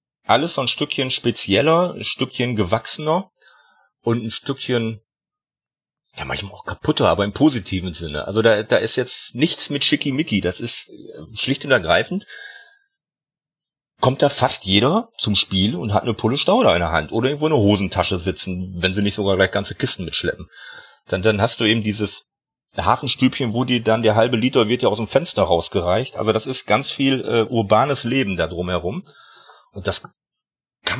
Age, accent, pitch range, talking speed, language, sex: 40-59, German, 100-135 Hz, 175 wpm, German, male